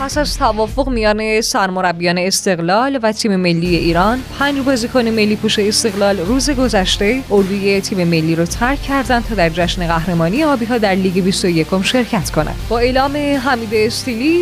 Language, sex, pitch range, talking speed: Persian, female, 185-250 Hz, 160 wpm